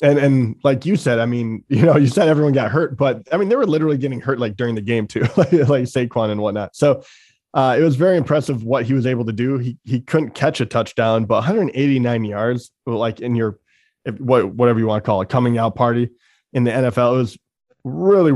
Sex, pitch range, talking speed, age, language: male, 115-140 Hz, 235 wpm, 20-39, English